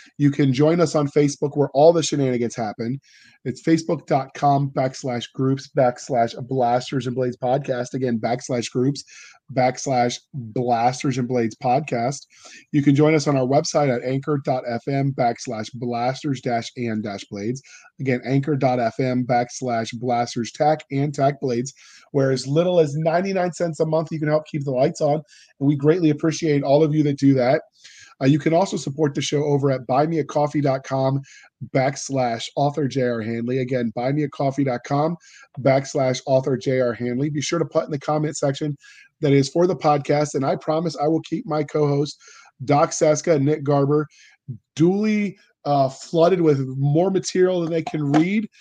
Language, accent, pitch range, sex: English, American, 130-160 Hz, male